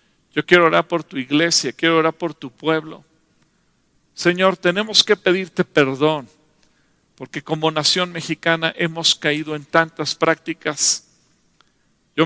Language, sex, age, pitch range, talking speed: English, male, 50-69, 150-170 Hz, 125 wpm